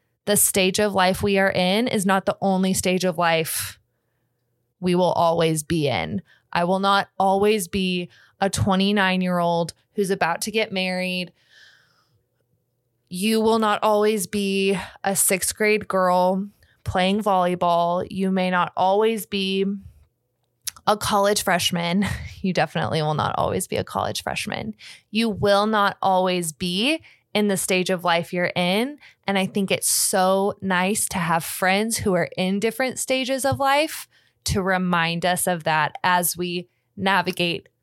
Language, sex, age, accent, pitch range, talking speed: English, female, 20-39, American, 175-205 Hz, 150 wpm